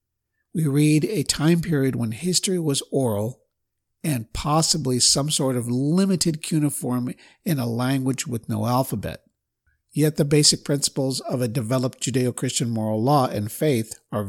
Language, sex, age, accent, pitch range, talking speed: English, male, 50-69, American, 115-140 Hz, 145 wpm